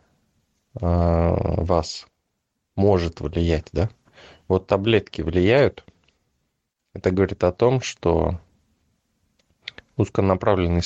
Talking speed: 70 wpm